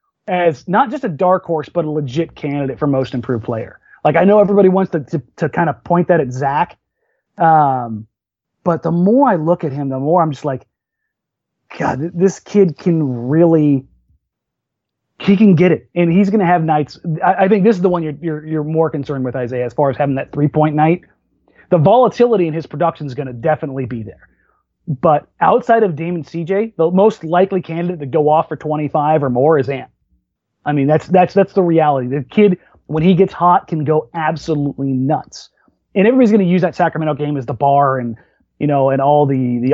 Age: 30-49